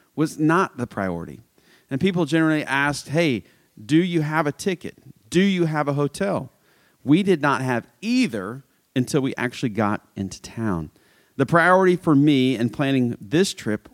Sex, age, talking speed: male, 40-59, 165 wpm